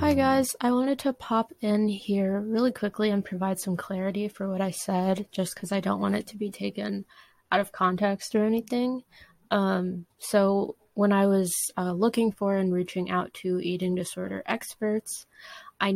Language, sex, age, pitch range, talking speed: English, female, 20-39, 175-200 Hz, 180 wpm